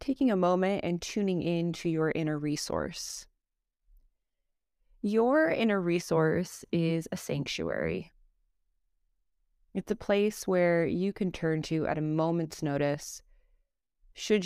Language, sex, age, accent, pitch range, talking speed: English, female, 20-39, American, 150-185 Hz, 120 wpm